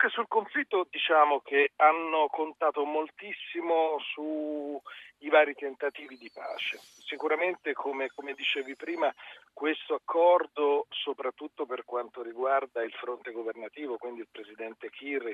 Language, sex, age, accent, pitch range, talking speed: Italian, male, 40-59, native, 115-160 Hz, 125 wpm